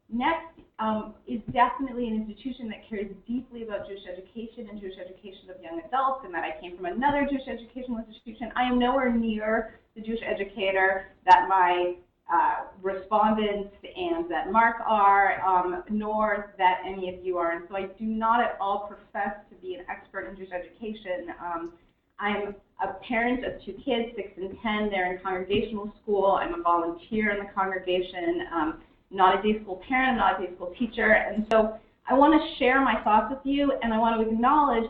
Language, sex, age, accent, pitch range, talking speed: English, female, 30-49, American, 195-240 Hz, 185 wpm